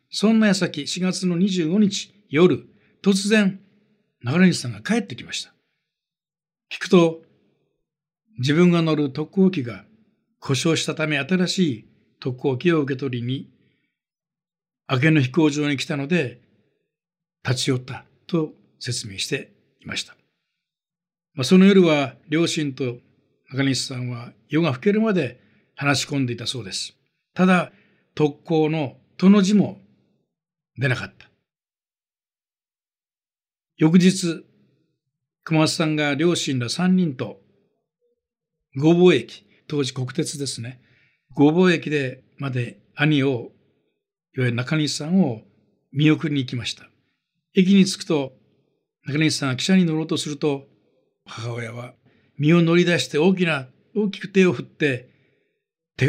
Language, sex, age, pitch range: Japanese, male, 60-79, 135-175 Hz